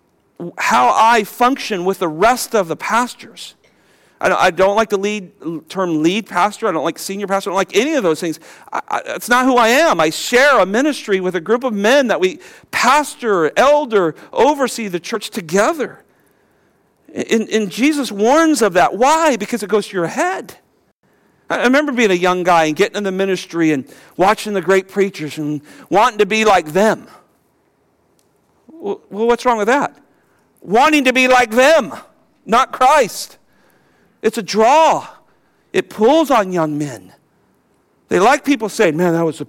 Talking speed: 180 wpm